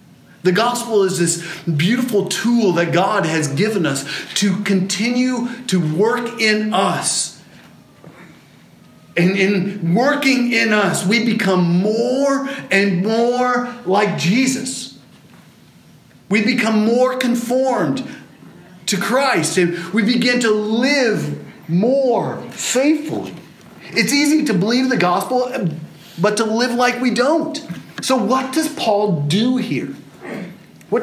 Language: English